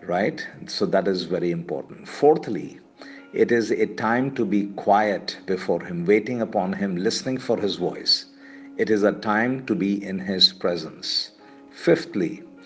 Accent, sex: Indian, male